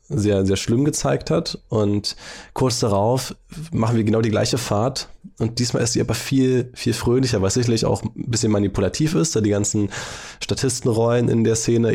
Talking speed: 180 wpm